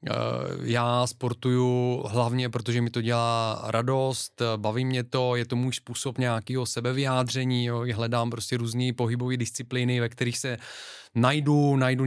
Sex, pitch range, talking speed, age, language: male, 120-145 Hz, 140 wpm, 20-39, Czech